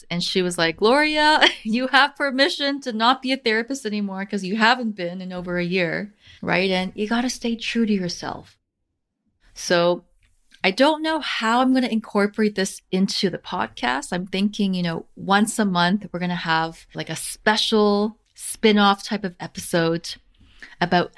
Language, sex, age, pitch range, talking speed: English, female, 30-49, 175-220 Hz, 180 wpm